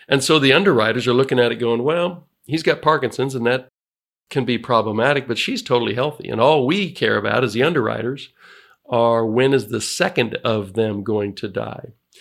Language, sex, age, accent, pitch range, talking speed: English, male, 50-69, American, 110-130 Hz, 195 wpm